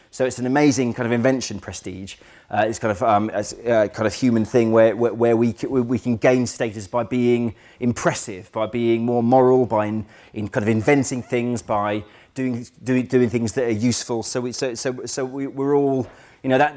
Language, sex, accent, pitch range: English, male, British, 110-130 Hz